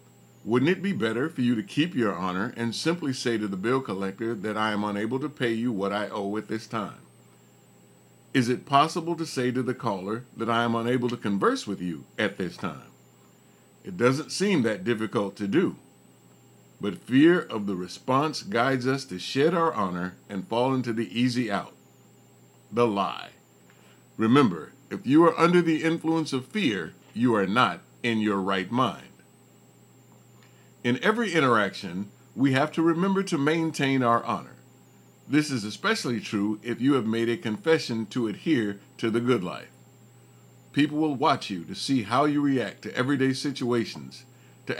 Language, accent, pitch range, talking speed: English, American, 105-145 Hz, 175 wpm